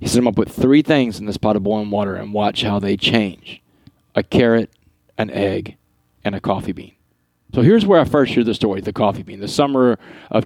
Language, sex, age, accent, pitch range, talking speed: English, male, 30-49, American, 105-120 Hz, 235 wpm